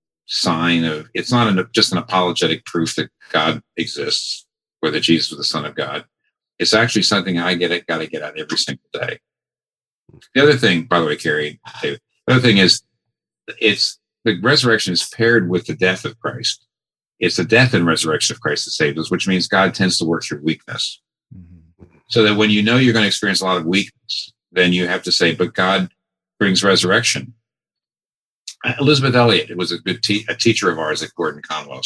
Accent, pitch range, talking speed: American, 85-115 Hz, 200 wpm